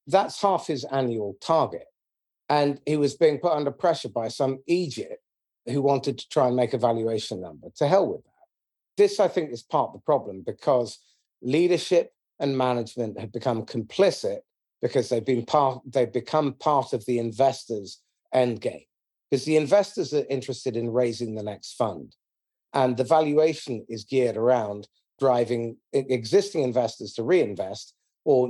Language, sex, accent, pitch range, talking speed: English, male, British, 125-160 Hz, 160 wpm